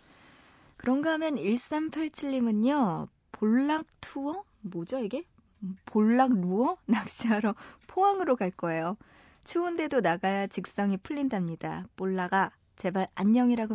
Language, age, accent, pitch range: Korean, 20-39, native, 190-250 Hz